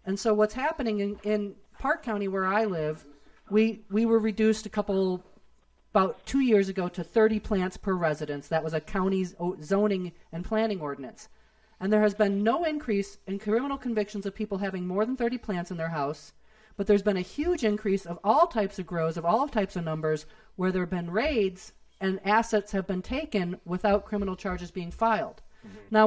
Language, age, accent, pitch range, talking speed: English, 40-59, American, 185-220 Hz, 195 wpm